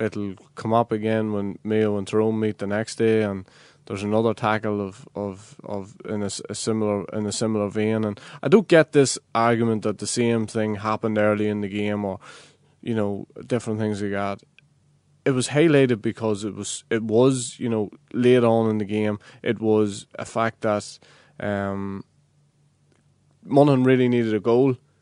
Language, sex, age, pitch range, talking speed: English, male, 20-39, 105-130 Hz, 180 wpm